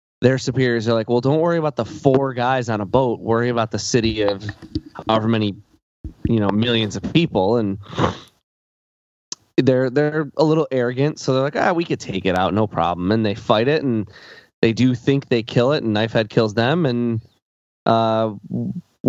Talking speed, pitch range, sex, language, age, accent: 190 wpm, 95-125 Hz, male, English, 20-39, American